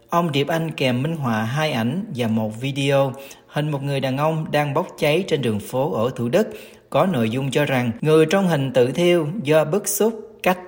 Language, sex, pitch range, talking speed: Vietnamese, male, 120-160 Hz, 220 wpm